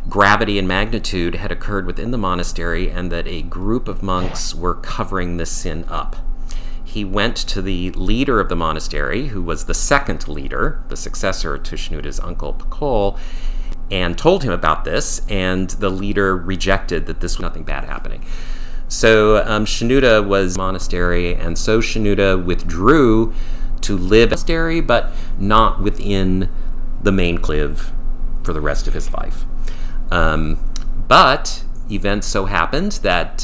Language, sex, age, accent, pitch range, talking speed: English, male, 40-59, American, 85-115 Hz, 155 wpm